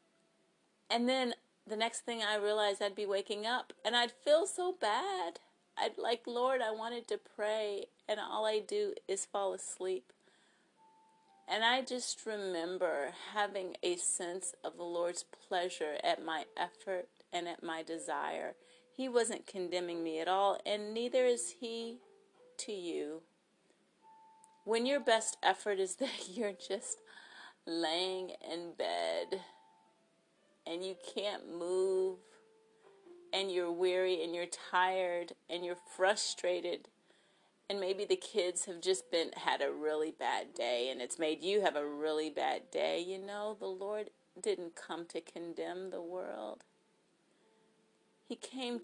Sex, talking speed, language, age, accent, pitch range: female, 145 wpm, English, 40-59, American, 180-240 Hz